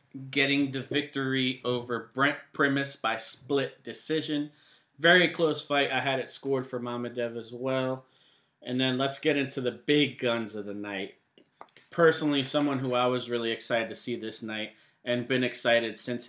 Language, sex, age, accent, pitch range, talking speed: English, male, 30-49, American, 115-140 Hz, 170 wpm